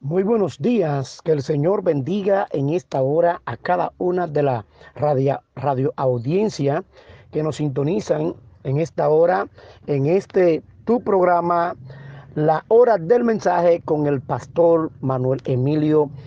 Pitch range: 140-185 Hz